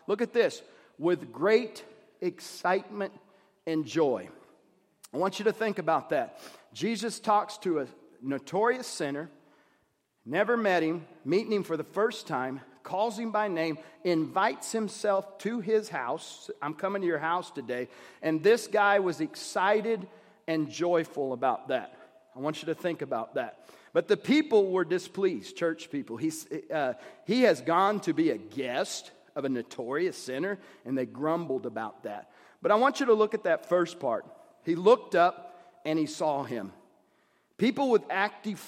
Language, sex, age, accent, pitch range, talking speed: English, male, 40-59, American, 160-215 Hz, 165 wpm